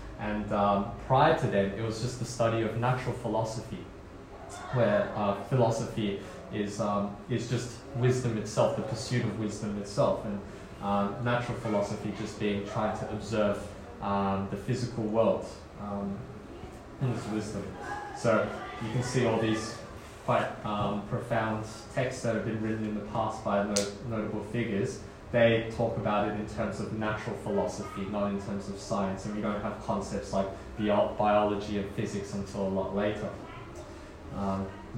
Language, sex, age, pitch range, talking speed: English, male, 20-39, 100-120 Hz, 160 wpm